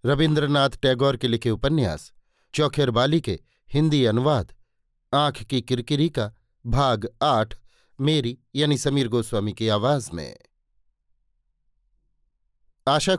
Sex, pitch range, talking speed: male, 115-145 Hz, 110 wpm